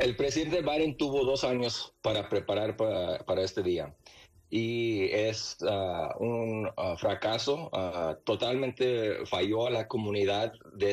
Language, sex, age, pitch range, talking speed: Spanish, male, 30-49, 105-130 Hz, 135 wpm